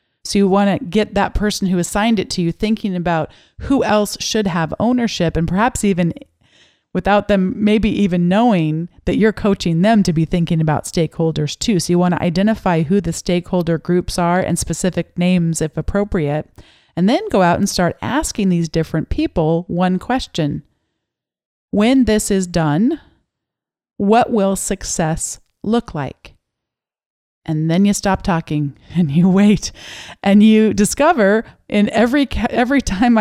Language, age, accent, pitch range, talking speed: English, 40-59, American, 170-215 Hz, 160 wpm